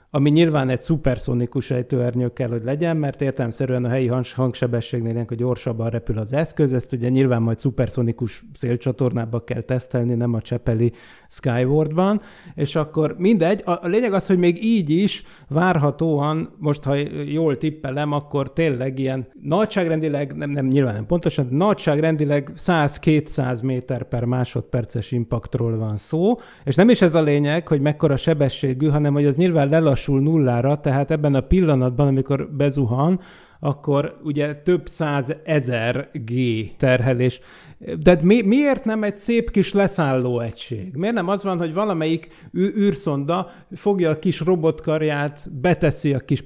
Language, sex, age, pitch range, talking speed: Hungarian, male, 30-49, 130-170 Hz, 140 wpm